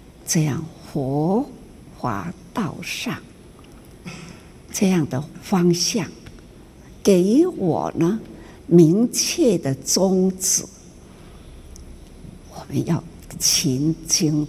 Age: 60-79